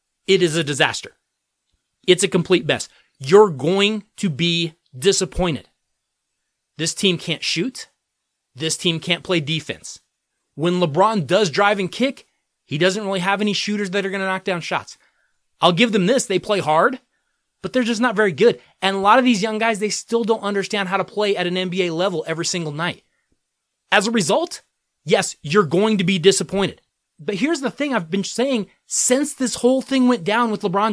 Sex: male